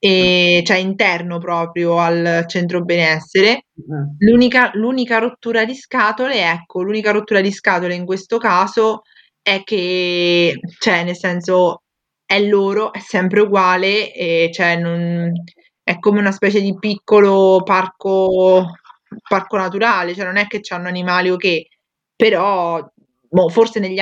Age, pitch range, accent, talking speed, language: 20-39, 180-210 Hz, native, 135 wpm, Italian